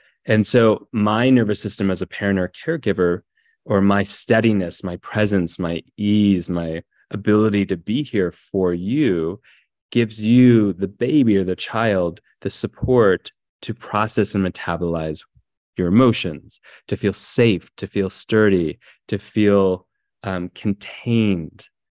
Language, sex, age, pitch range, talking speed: English, male, 30-49, 90-110 Hz, 135 wpm